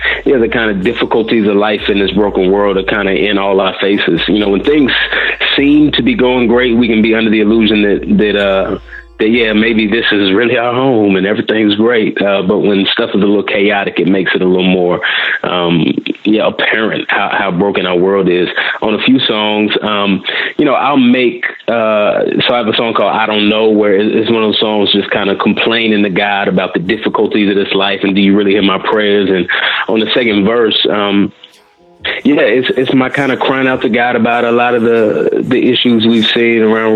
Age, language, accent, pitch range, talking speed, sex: 30-49, English, American, 100-115 Hz, 230 wpm, male